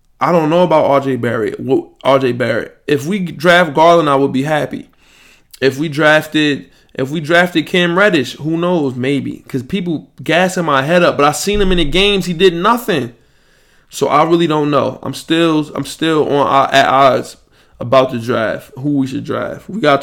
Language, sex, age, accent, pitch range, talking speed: English, male, 20-39, American, 135-170 Hz, 190 wpm